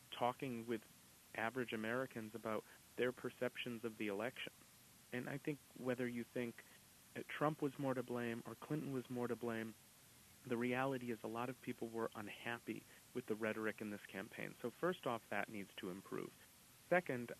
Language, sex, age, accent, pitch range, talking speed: English, male, 40-59, American, 115-135 Hz, 170 wpm